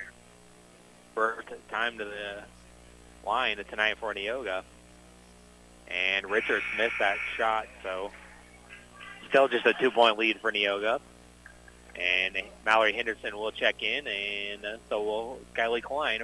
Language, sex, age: English, male, 30-49